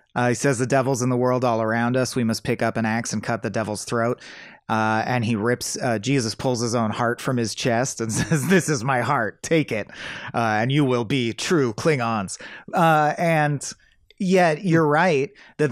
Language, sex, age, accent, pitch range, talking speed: English, male, 30-49, American, 115-150 Hz, 215 wpm